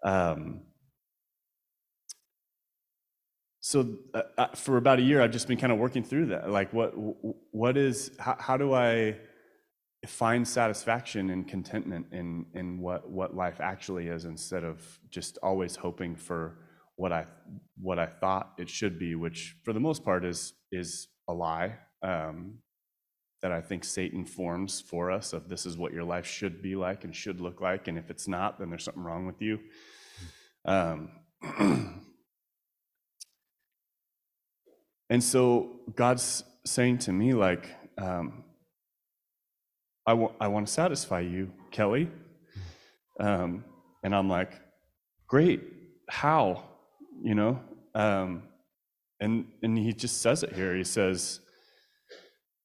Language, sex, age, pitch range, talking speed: English, male, 30-49, 90-120 Hz, 140 wpm